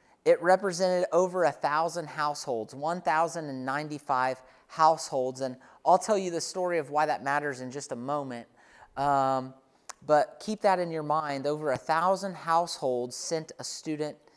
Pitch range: 145-180 Hz